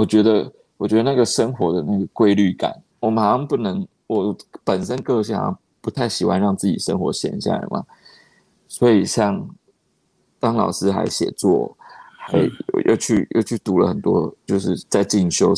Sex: male